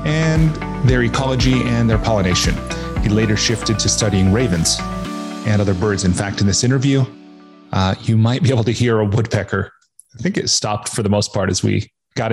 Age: 30-49